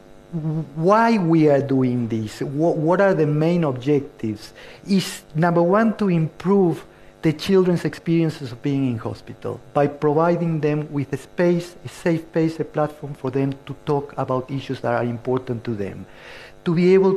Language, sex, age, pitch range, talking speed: English, male, 50-69, 140-180 Hz, 170 wpm